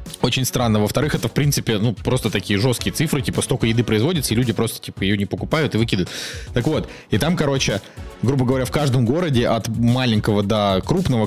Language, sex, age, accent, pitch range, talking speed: Russian, male, 20-39, native, 110-130 Hz, 200 wpm